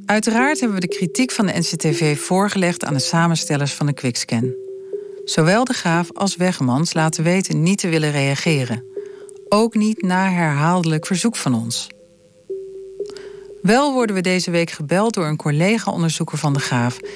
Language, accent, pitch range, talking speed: Dutch, Dutch, 155-210 Hz, 155 wpm